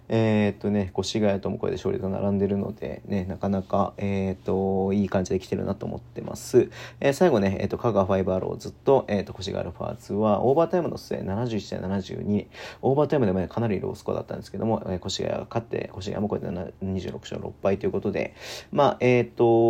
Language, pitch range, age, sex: Japanese, 95-115 Hz, 40-59, male